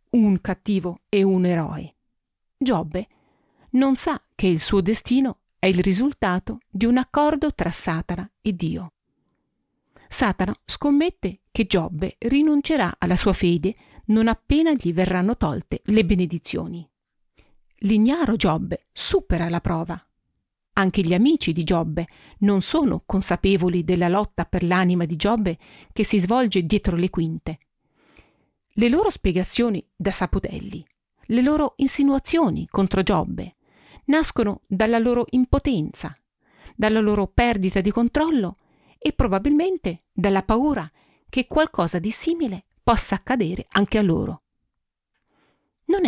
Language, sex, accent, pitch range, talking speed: Italian, female, native, 185-250 Hz, 125 wpm